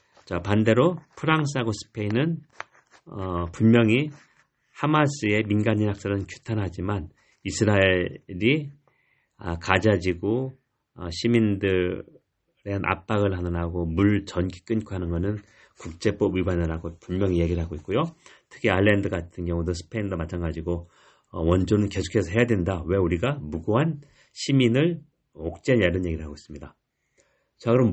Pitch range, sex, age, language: 90-135 Hz, male, 40-59, Korean